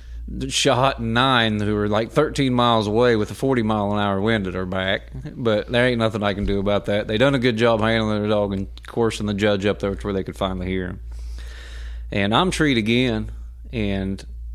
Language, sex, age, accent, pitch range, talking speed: English, male, 30-49, American, 95-115 Hz, 220 wpm